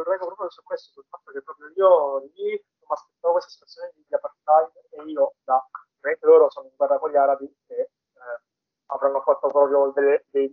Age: 20-39